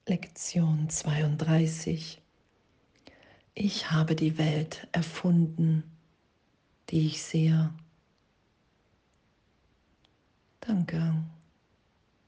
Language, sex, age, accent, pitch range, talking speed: German, female, 40-59, German, 160-170 Hz, 55 wpm